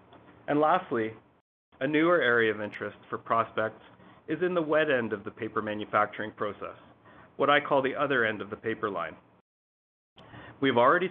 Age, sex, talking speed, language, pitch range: 30-49, male, 175 wpm, English, 110-140 Hz